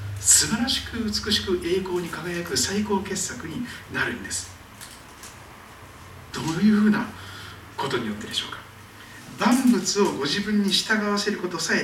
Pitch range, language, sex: 125-205 Hz, Japanese, male